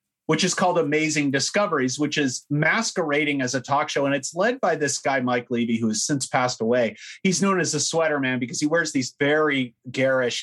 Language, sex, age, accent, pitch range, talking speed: English, male, 30-49, American, 130-165 Hz, 215 wpm